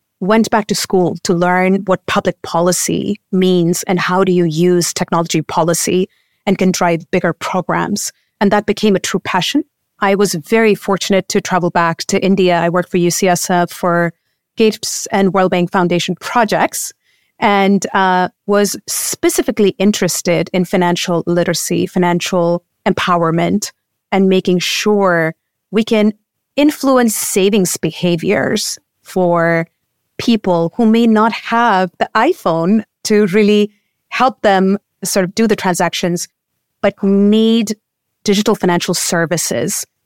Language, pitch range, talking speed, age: English, 175-205 Hz, 130 wpm, 30-49